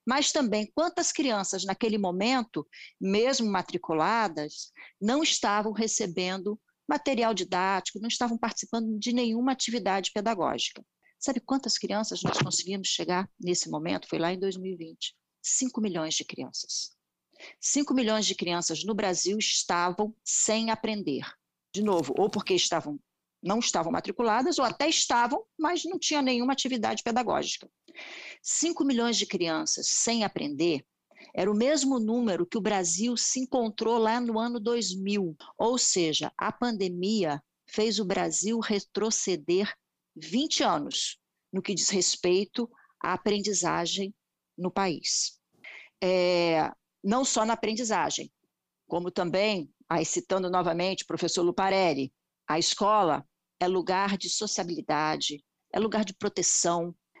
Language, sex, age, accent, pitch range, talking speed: Portuguese, female, 40-59, Brazilian, 185-235 Hz, 130 wpm